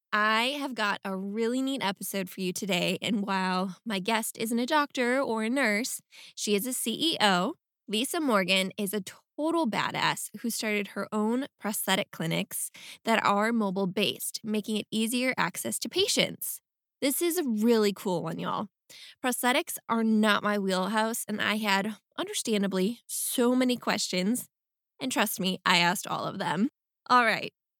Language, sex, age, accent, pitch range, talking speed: English, female, 10-29, American, 200-245 Hz, 160 wpm